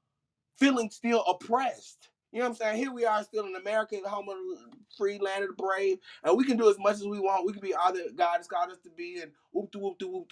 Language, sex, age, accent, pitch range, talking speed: English, male, 30-49, American, 165-230 Hz, 270 wpm